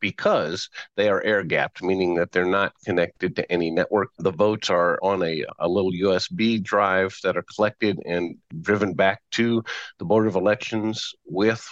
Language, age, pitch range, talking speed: English, 50-69, 95-110 Hz, 175 wpm